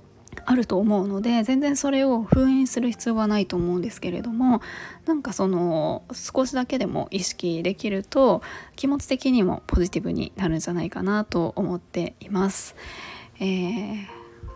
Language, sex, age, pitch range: Japanese, female, 20-39, 180-230 Hz